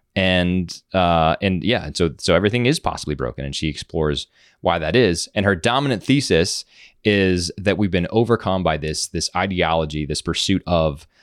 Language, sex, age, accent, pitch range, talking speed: English, male, 20-39, American, 75-95 Hz, 175 wpm